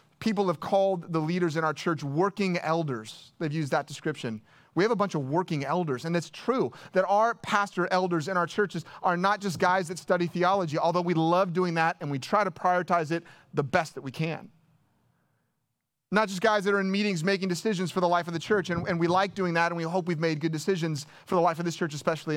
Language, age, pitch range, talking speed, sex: English, 30-49, 155-200 Hz, 240 wpm, male